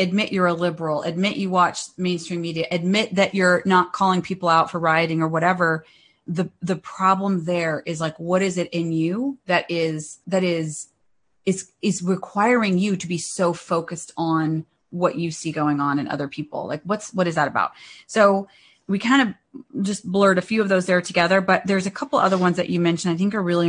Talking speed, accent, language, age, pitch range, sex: 210 wpm, American, English, 30-49, 170-200 Hz, female